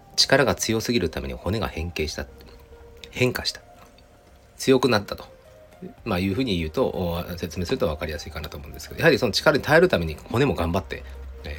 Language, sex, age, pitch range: Japanese, male, 40-59, 80-105 Hz